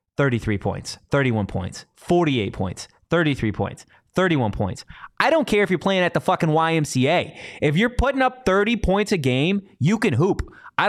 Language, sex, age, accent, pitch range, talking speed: English, male, 20-39, American, 120-170 Hz, 175 wpm